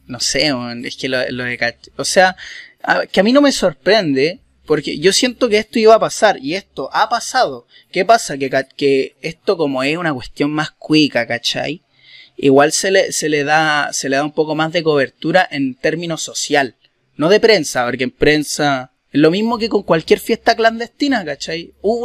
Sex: male